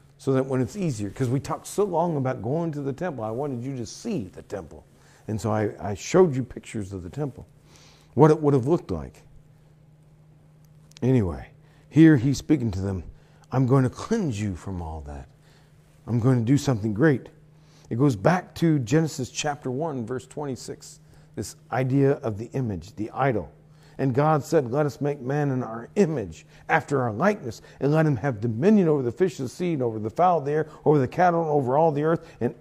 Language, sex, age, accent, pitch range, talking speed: English, male, 50-69, American, 130-170 Hz, 210 wpm